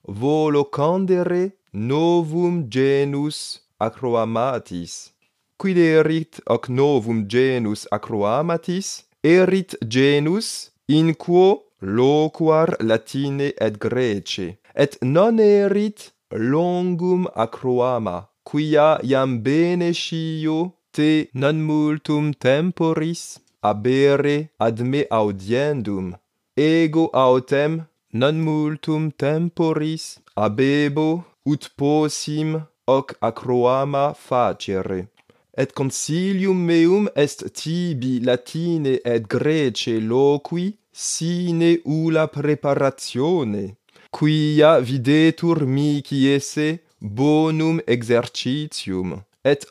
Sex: male